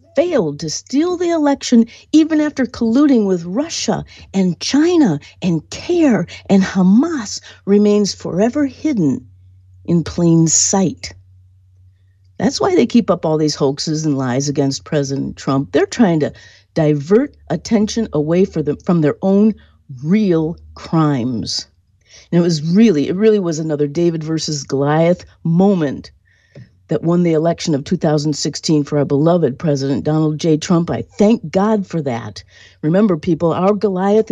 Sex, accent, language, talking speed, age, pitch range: female, American, English, 140 wpm, 50-69, 140-205 Hz